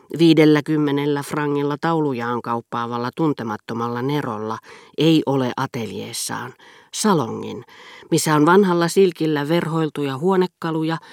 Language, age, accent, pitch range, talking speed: Finnish, 40-59, native, 120-155 Hz, 85 wpm